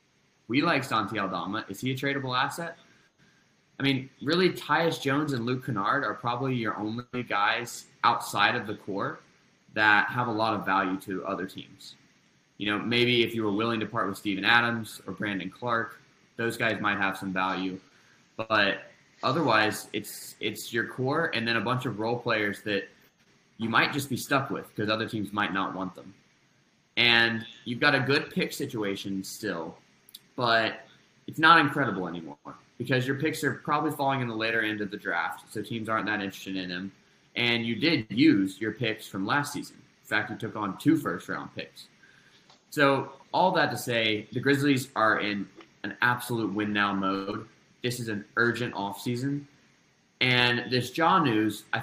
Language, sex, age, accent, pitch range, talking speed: English, male, 20-39, American, 105-135 Hz, 185 wpm